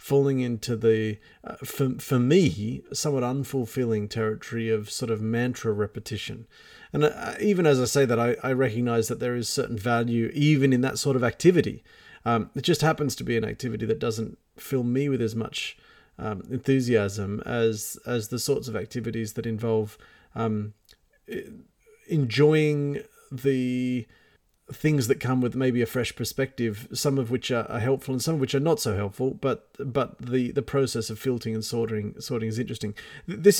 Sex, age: male, 40-59